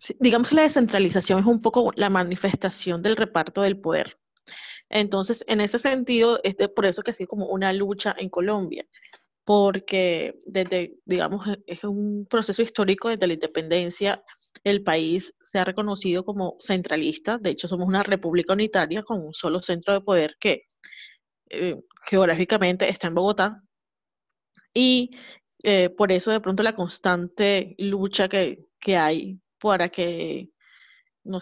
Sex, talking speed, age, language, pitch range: female, 155 wpm, 30-49, Spanish, 185-215 Hz